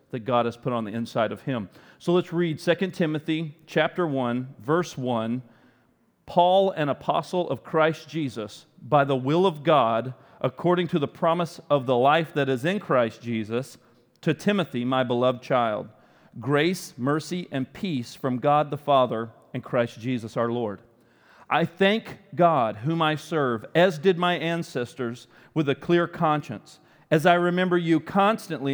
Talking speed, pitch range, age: 165 wpm, 125-170 Hz, 40-59